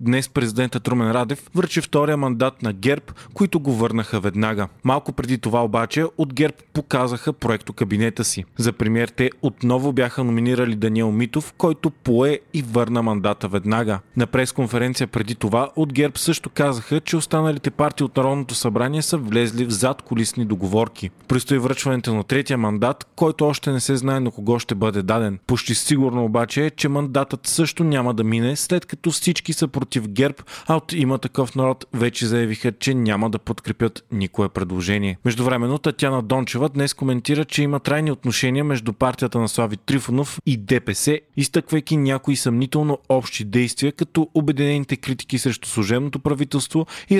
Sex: male